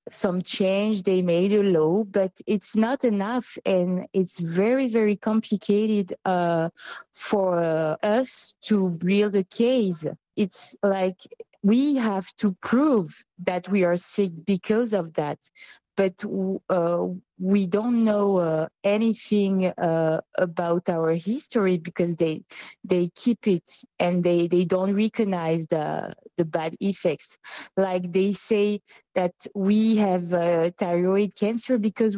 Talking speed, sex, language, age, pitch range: 130 wpm, female, English, 20-39, 180-220 Hz